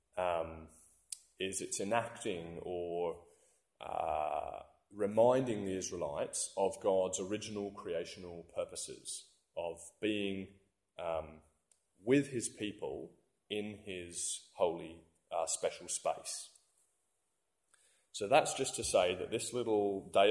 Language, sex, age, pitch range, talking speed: English, male, 30-49, 90-115 Hz, 105 wpm